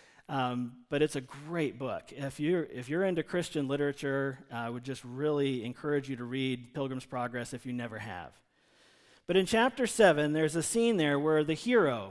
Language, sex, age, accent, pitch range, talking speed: English, male, 40-59, American, 140-190 Hz, 190 wpm